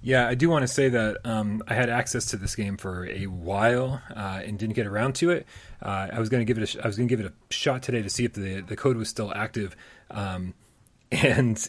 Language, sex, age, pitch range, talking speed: English, male, 30-49, 95-120 Hz, 270 wpm